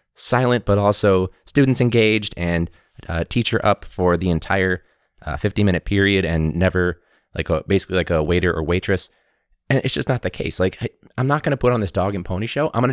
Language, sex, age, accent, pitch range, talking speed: English, male, 20-39, American, 75-100 Hz, 220 wpm